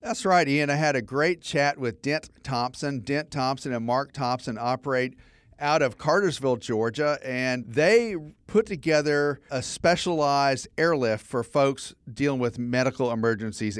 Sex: male